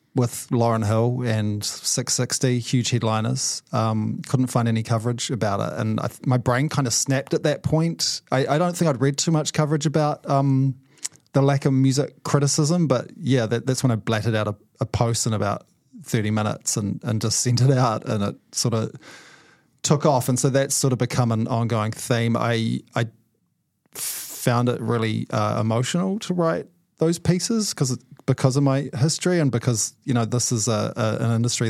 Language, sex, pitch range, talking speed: English, male, 115-140 Hz, 195 wpm